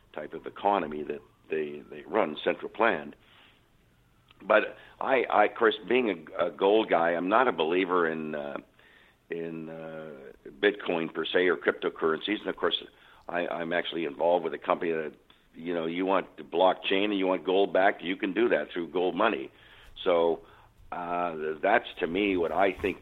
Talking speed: 180 wpm